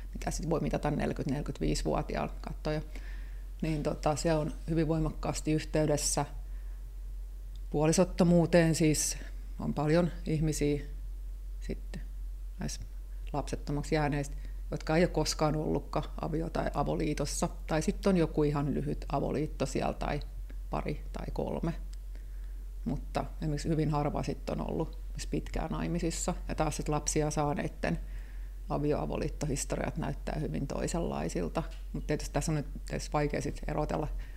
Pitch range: 145-160 Hz